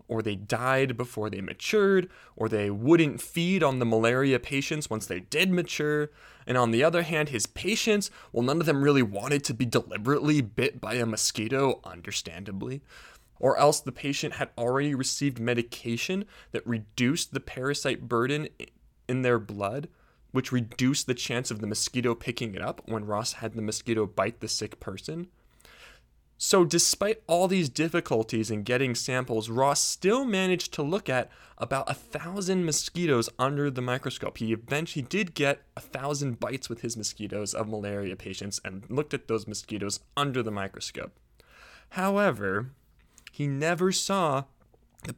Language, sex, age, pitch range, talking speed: English, male, 20-39, 110-155 Hz, 160 wpm